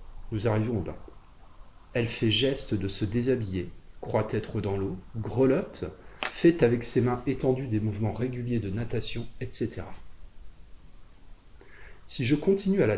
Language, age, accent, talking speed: French, 30-49, French, 140 wpm